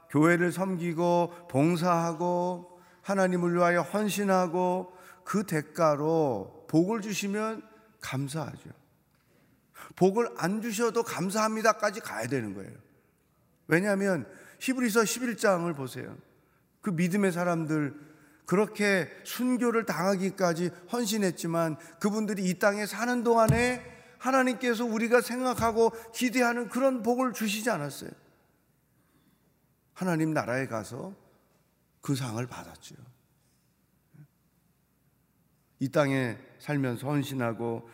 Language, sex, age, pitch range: Korean, male, 40-59, 135-205 Hz